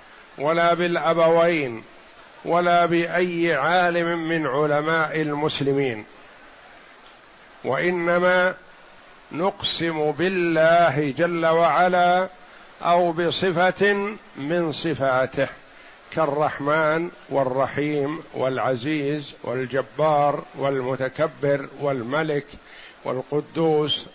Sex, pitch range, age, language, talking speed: male, 145-175 Hz, 50-69, Arabic, 60 wpm